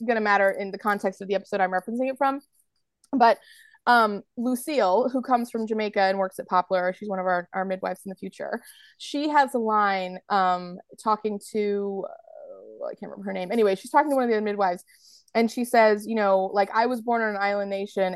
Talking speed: 220 wpm